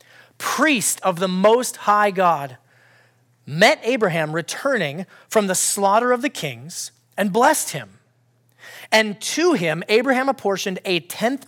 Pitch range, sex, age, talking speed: 150-235 Hz, male, 30-49, 130 wpm